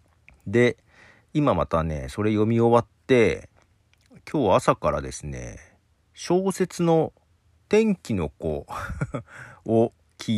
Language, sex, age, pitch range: Japanese, male, 50-69, 80-120 Hz